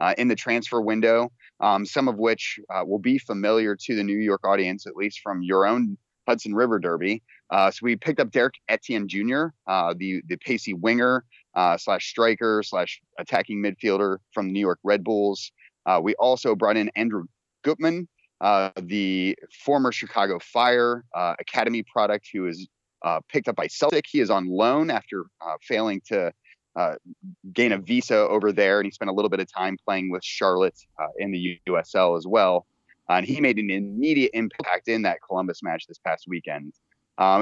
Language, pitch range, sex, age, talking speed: English, 95-125 Hz, male, 30-49, 190 wpm